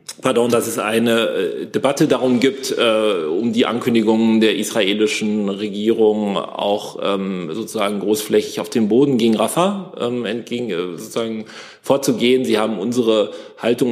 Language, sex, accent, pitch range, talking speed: German, male, German, 110-125 Hz, 135 wpm